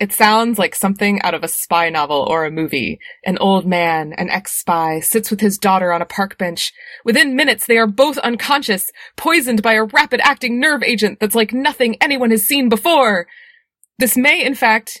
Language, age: English, 20-39